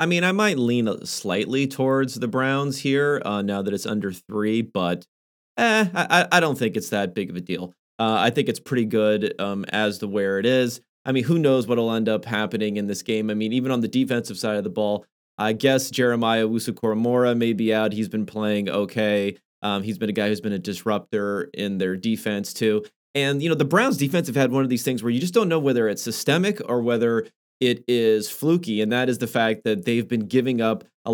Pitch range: 110-140 Hz